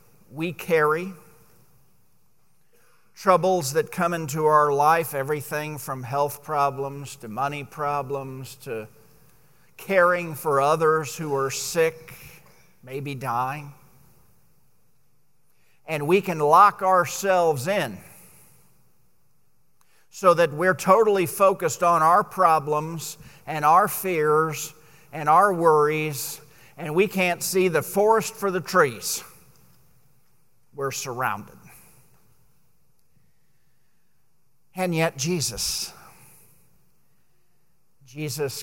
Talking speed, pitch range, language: 90 wpm, 140-170 Hz, English